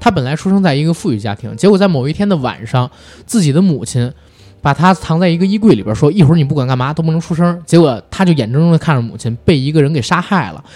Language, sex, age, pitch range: Chinese, male, 20-39, 120-175 Hz